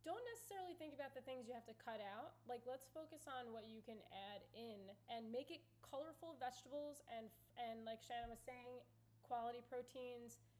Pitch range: 210-250 Hz